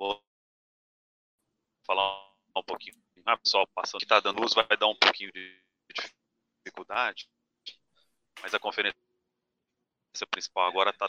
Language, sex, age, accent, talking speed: Portuguese, male, 30-49, Brazilian, 125 wpm